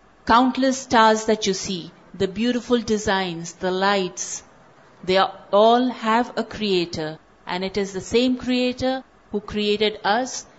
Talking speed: 140 wpm